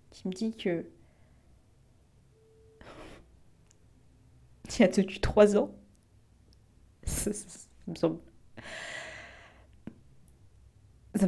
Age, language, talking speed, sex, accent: 30-49, French, 100 wpm, female, French